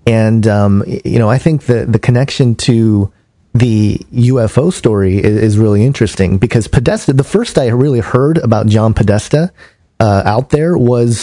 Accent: American